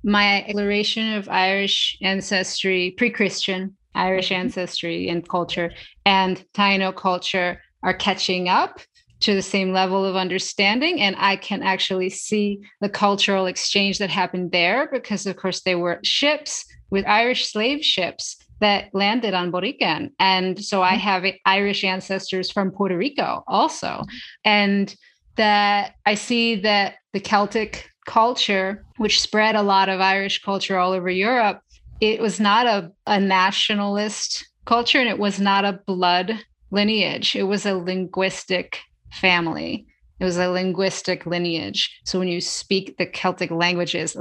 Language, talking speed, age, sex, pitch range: English, 145 wpm, 30-49, female, 185-205 Hz